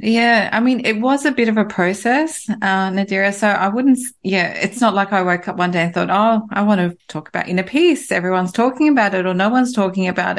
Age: 30-49